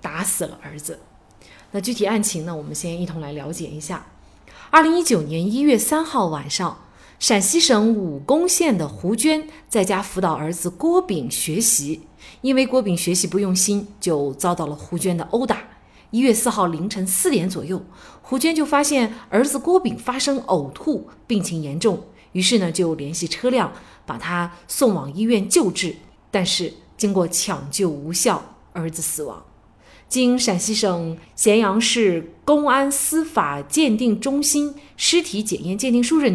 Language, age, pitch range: Chinese, 30-49, 170-255 Hz